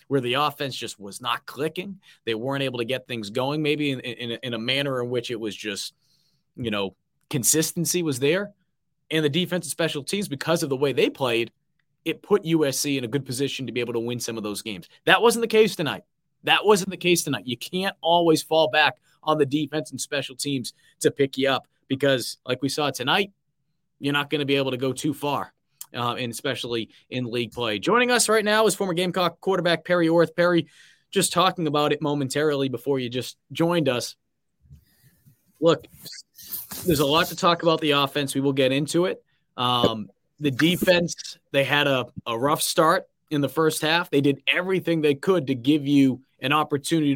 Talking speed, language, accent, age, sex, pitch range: 205 wpm, English, American, 20-39, male, 130-165 Hz